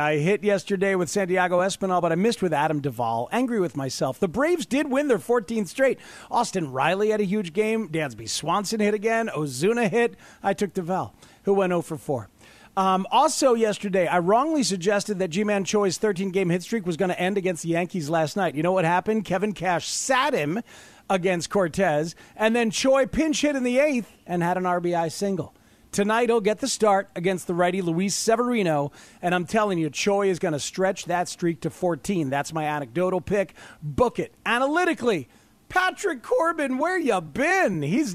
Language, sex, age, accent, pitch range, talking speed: English, male, 40-59, American, 170-225 Hz, 190 wpm